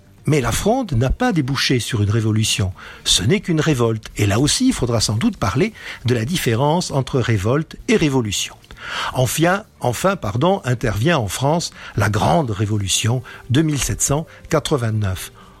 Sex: male